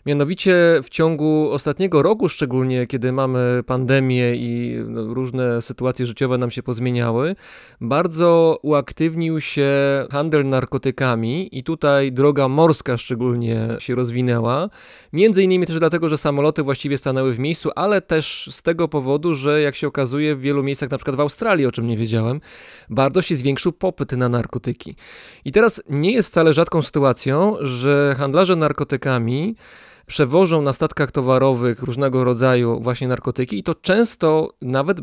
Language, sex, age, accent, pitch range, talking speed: Polish, male, 20-39, native, 125-160 Hz, 145 wpm